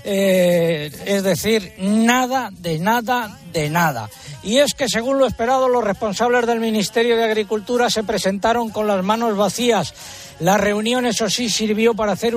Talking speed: 160 wpm